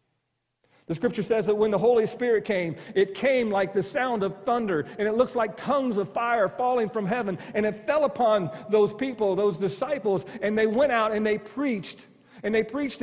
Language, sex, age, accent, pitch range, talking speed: English, male, 50-69, American, 195-250 Hz, 205 wpm